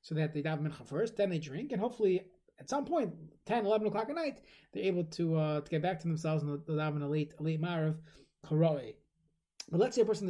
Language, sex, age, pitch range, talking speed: English, male, 20-39, 155-200 Hz, 240 wpm